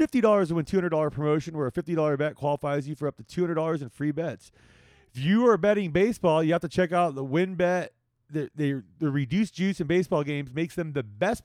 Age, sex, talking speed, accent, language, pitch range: 30-49, male, 215 wpm, American, English, 140-185 Hz